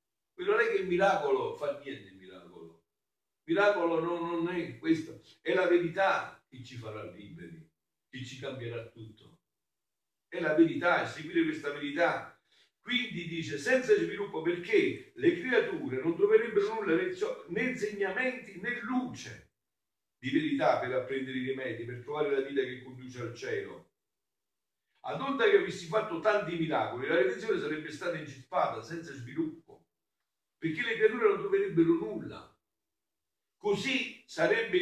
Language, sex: Italian, male